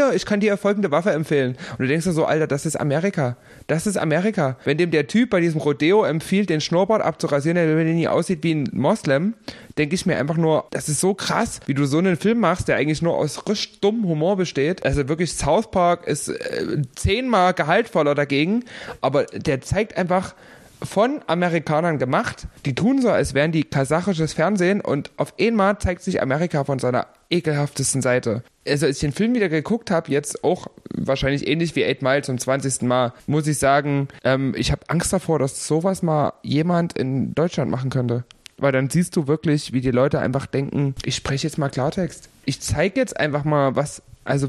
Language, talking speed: German, 200 wpm